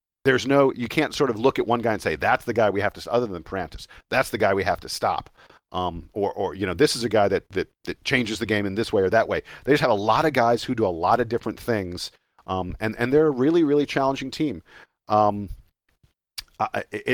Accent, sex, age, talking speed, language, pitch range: American, male, 40-59, 260 wpm, English, 95-120 Hz